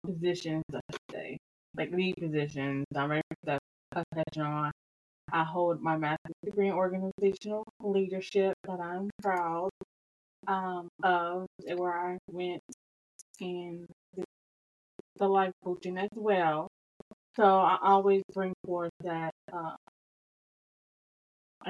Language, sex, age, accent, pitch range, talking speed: English, female, 20-39, American, 170-200 Hz, 110 wpm